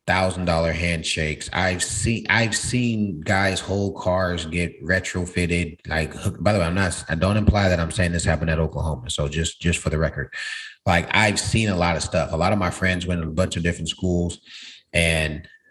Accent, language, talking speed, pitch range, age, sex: American, English, 210 wpm, 80-100 Hz, 30-49, male